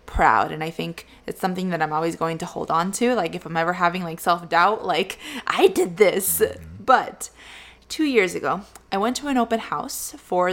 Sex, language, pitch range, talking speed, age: female, English, 170-215 Hz, 205 wpm, 20-39